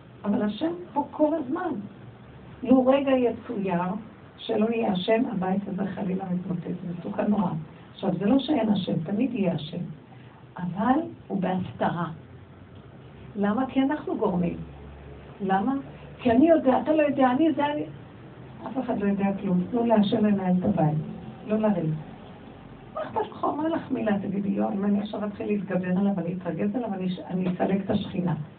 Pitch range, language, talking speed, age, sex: 185-255 Hz, Hebrew, 145 wpm, 60-79, female